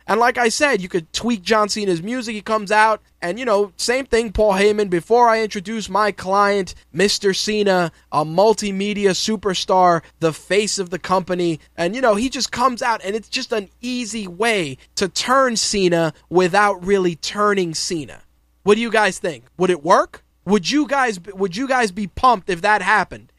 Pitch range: 185-225 Hz